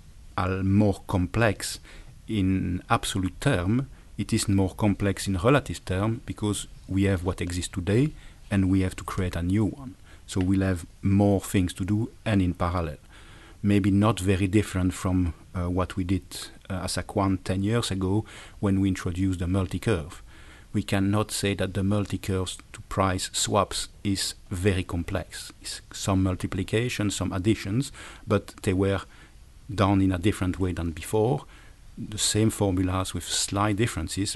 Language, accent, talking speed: English, French, 155 wpm